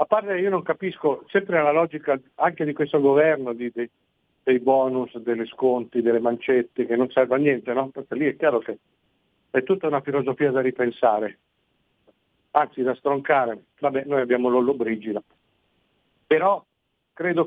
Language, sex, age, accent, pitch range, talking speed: Italian, male, 50-69, native, 130-175 Hz, 160 wpm